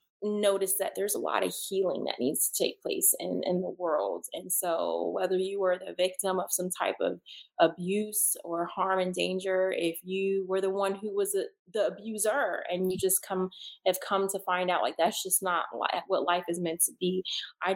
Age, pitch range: 20-39, 180-210 Hz